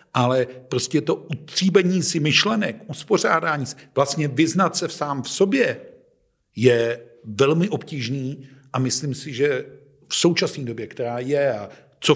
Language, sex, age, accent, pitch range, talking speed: Czech, male, 50-69, native, 135-170 Hz, 140 wpm